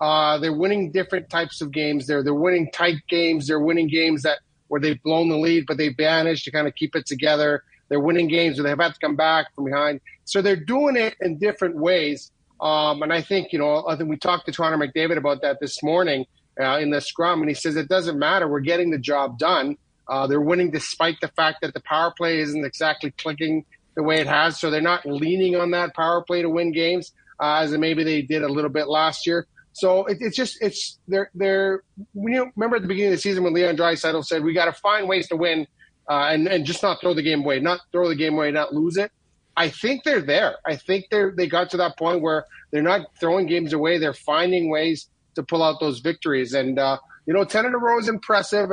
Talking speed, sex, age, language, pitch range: 245 wpm, male, 40-59, English, 150-180 Hz